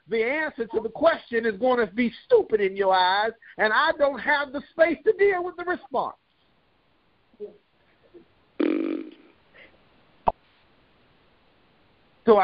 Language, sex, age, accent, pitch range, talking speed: English, male, 50-69, American, 205-310 Hz, 120 wpm